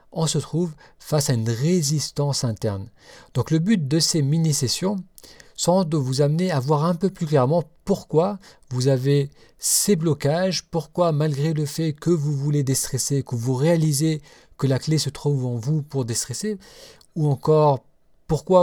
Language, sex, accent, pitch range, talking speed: French, male, French, 125-165 Hz, 170 wpm